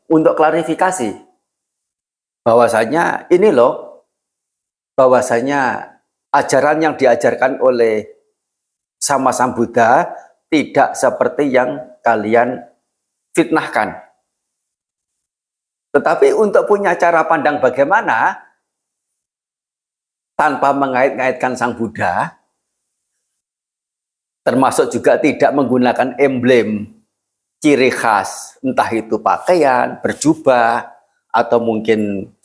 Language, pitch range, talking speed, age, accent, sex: Indonesian, 110-155 Hz, 75 wpm, 50-69, native, male